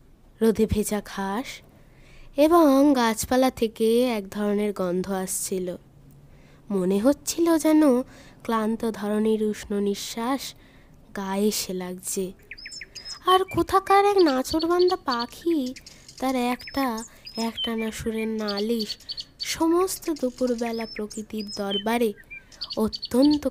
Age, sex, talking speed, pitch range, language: 20-39, female, 90 wpm, 205-255 Hz, Bengali